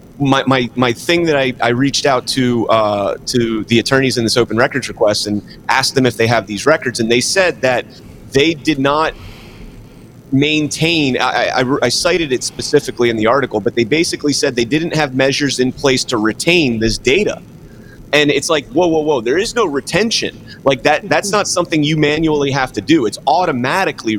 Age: 30-49